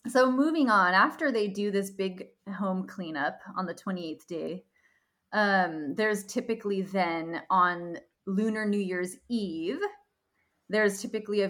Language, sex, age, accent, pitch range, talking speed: English, female, 20-39, American, 170-205 Hz, 135 wpm